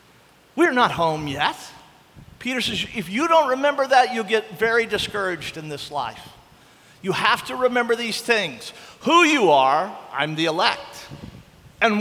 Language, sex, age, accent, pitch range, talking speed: English, male, 50-69, American, 175-275 Hz, 155 wpm